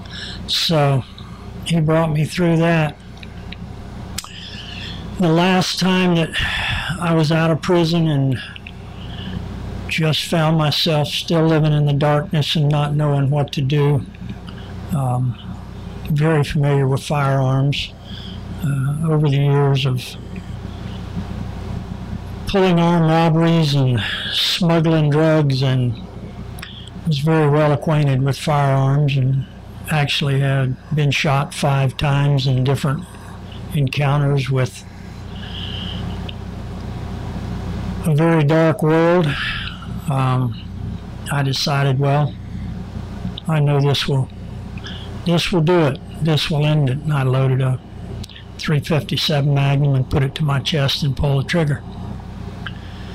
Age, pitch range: 60-79, 100-150 Hz